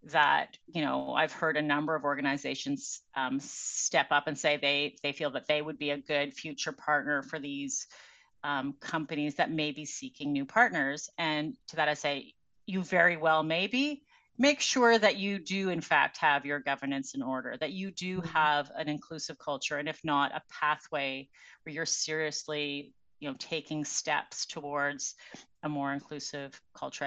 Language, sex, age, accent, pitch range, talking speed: English, female, 30-49, American, 145-205 Hz, 175 wpm